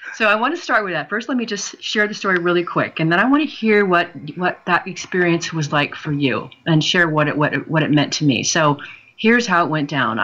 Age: 40-59